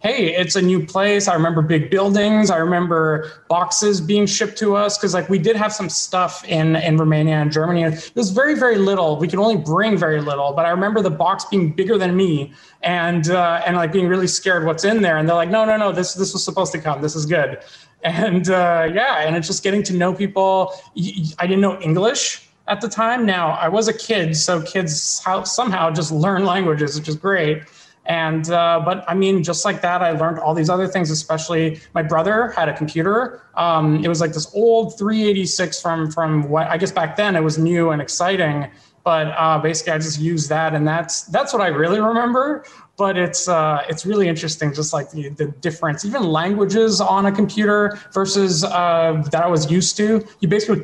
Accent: American